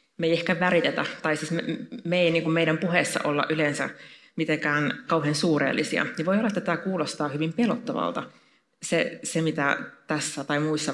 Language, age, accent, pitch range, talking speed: Finnish, 30-49, native, 145-180 Hz, 175 wpm